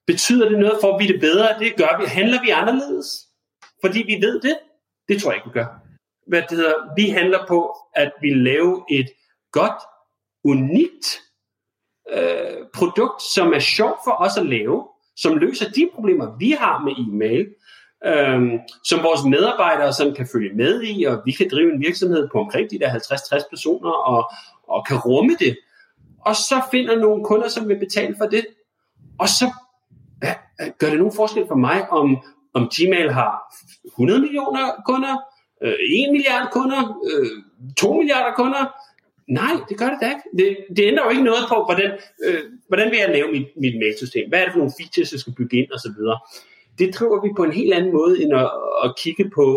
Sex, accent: male, native